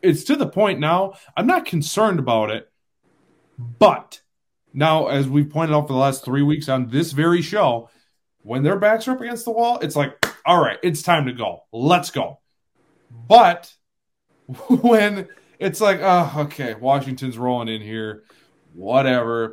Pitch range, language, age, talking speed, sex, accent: 125-190 Hz, English, 20-39, 170 wpm, male, American